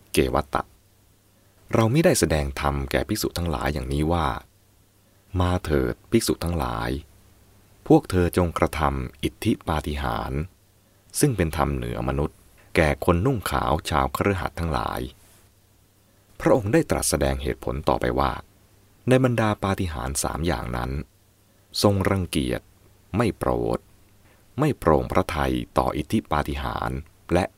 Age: 30-49